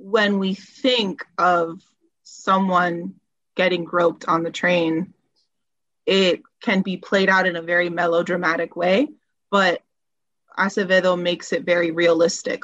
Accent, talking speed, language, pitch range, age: American, 125 wpm, English, 175-210 Hz, 20-39